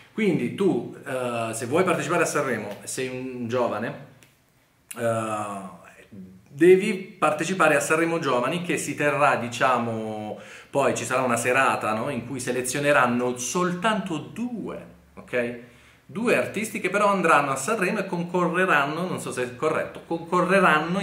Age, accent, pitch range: 40-59, native, 125-185 Hz